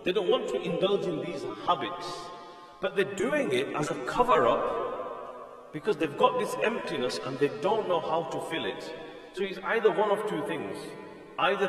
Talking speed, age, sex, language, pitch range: 185 wpm, 40-59, male, English, 115-180 Hz